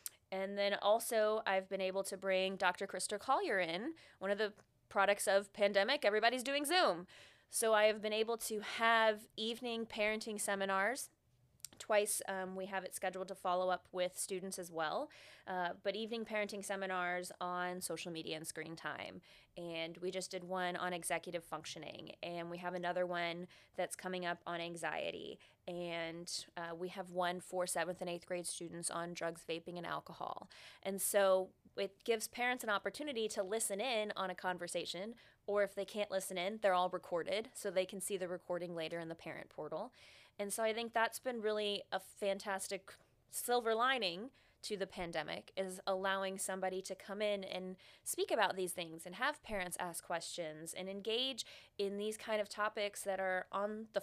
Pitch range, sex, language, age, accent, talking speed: 180-215 Hz, female, English, 20-39, American, 180 wpm